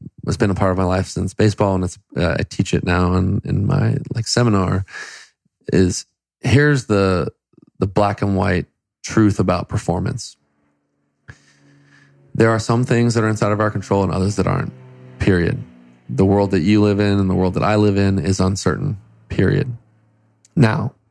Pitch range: 95-115 Hz